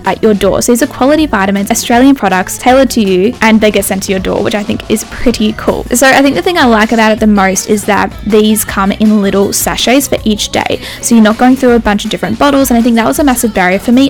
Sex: female